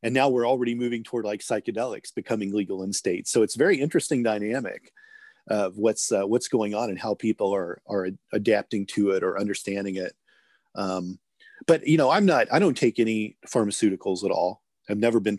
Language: English